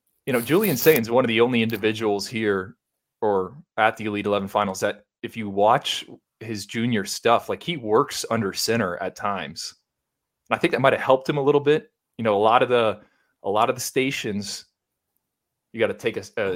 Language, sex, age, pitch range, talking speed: English, male, 30-49, 100-115 Hz, 215 wpm